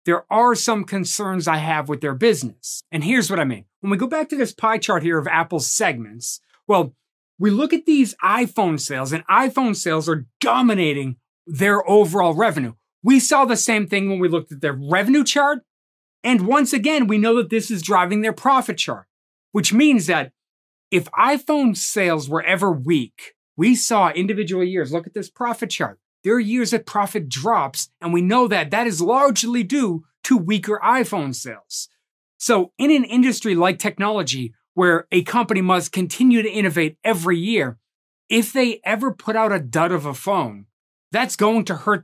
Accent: American